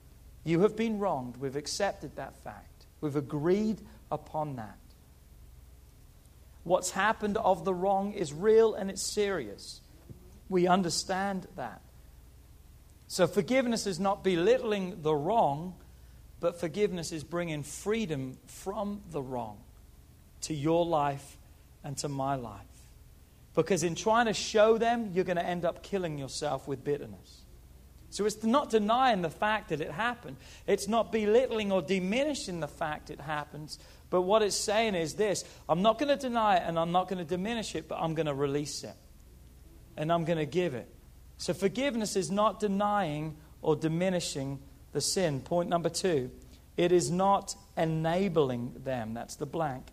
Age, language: 40-59, English